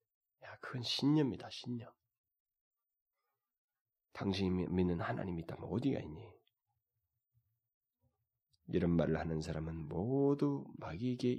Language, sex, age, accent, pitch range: Korean, male, 30-49, native, 105-150 Hz